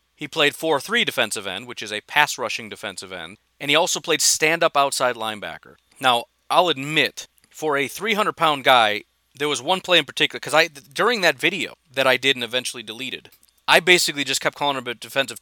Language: English